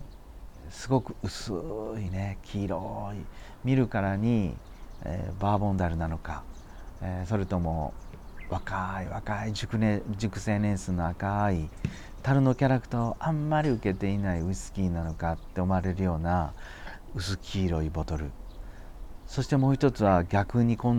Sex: male